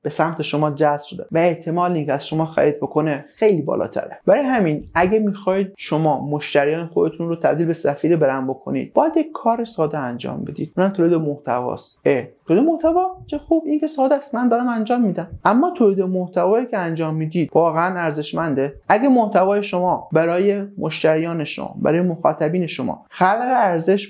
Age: 30-49